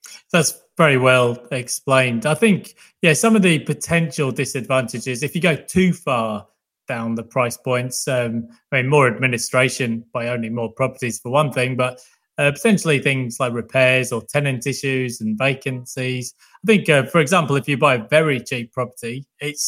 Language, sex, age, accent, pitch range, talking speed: English, male, 20-39, British, 125-145 Hz, 175 wpm